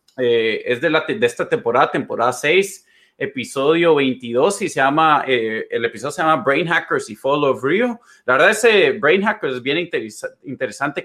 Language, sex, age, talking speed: Spanish, male, 30-49, 185 wpm